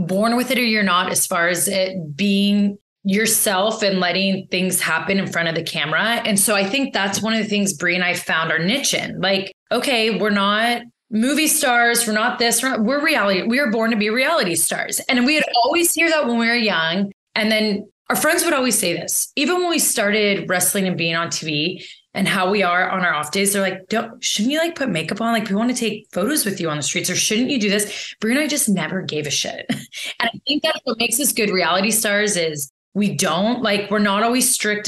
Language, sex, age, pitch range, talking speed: English, female, 20-39, 180-225 Hz, 245 wpm